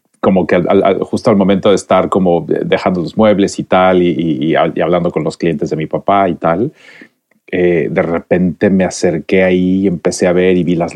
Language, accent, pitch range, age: Spanish, Mexican, 85-95 Hz, 30-49